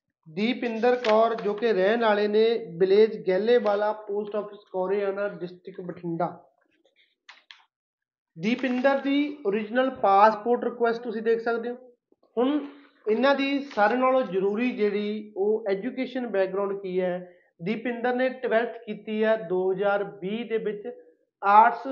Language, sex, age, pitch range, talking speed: Punjabi, male, 30-49, 200-245 Hz, 125 wpm